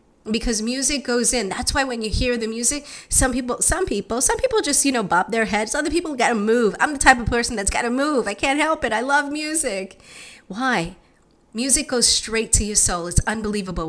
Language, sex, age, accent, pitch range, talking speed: English, female, 30-49, American, 205-260 Hz, 230 wpm